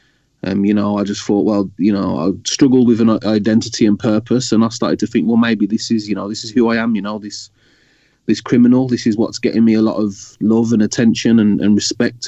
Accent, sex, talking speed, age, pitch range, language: British, male, 250 wpm, 20-39, 100-115 Hz, English